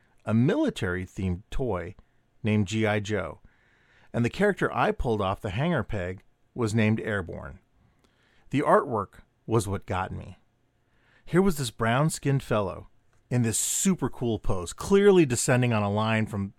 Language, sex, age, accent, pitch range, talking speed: English, male, 40-59, American, 105-135 Hz, 150 wpm